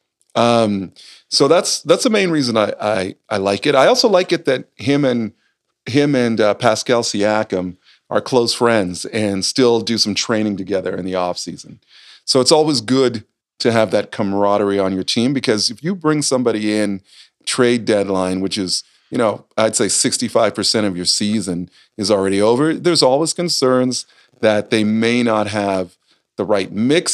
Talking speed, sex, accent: 175 wpm, male, American